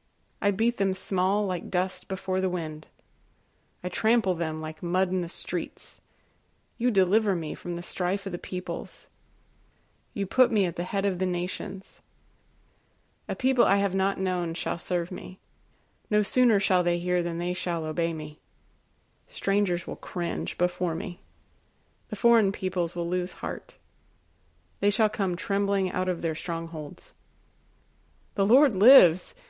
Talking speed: 155 wpm